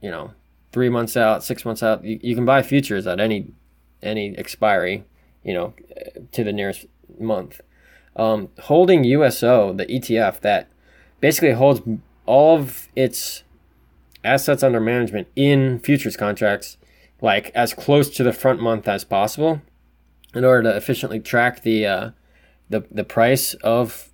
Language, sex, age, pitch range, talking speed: English, male, 20-39, 105-130 Hz, 150 wpm